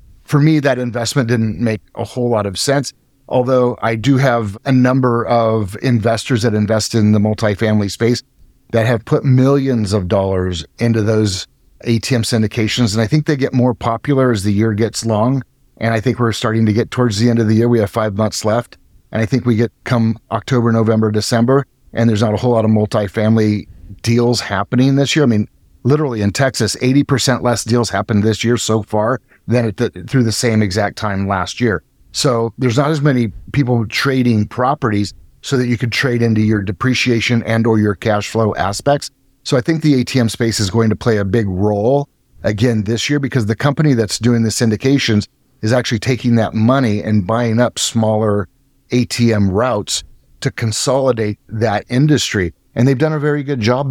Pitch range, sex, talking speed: 105-125 Hz, male, 195 wpm